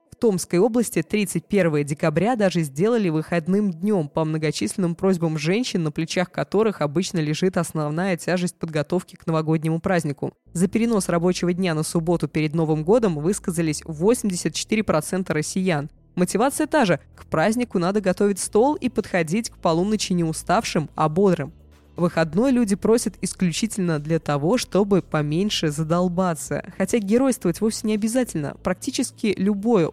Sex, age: female, 20-39